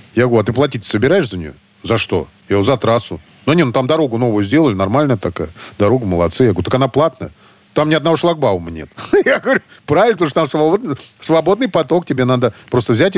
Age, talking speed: 40-59, 215 wpm